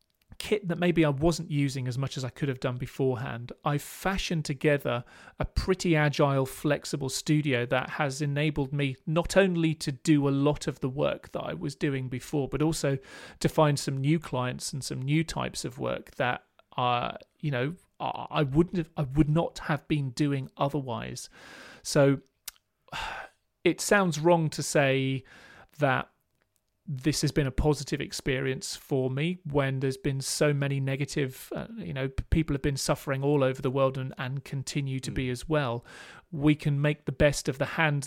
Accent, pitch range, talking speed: British, 135-155 Hz, 180 wpm